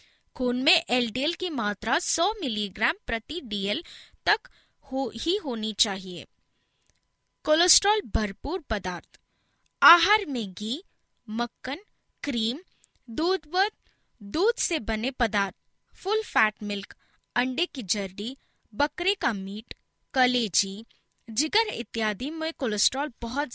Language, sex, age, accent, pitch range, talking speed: Hindi, female, 20-39, native, 210-320 Hz, 110 wpm